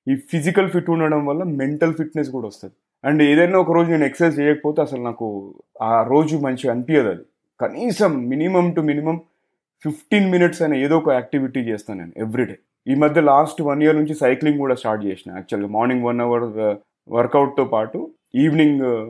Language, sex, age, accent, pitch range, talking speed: Telugu, male, 20-39, native, 120-155 Hz, 165 wpm